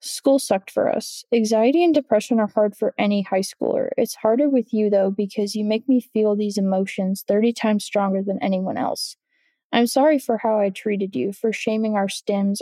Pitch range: 200-235 Hz